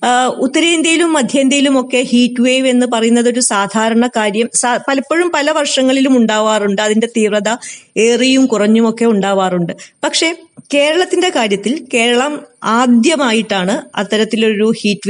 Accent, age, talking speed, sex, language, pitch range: native, 20-39, 105 wpm, female, Malayalam, 200-245 Hz